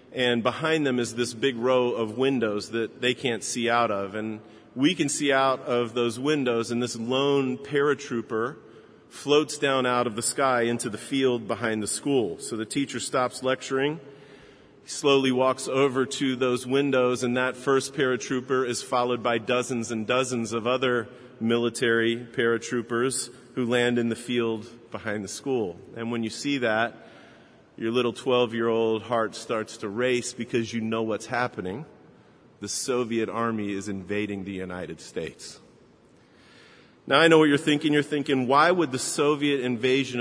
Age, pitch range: 40-59, 115-130 Hz